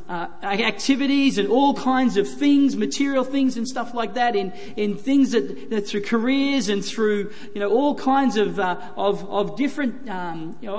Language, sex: English, male